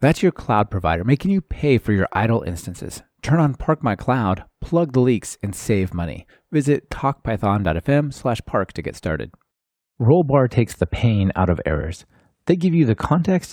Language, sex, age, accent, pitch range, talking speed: English, male, 30-49, American, 100-135 Hz, 175 wpm